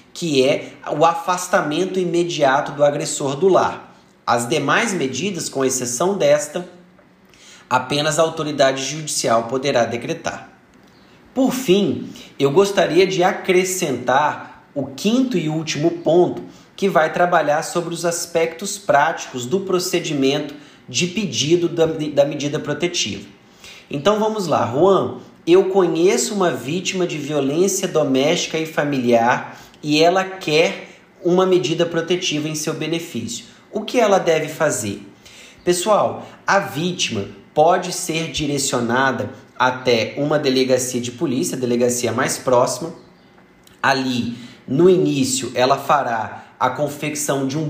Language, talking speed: Portuguese, 120 wpm